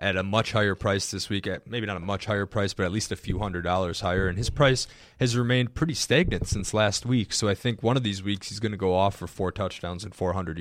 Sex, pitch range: male, 90-105 Hz